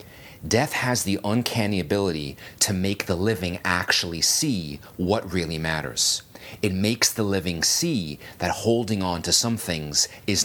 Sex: male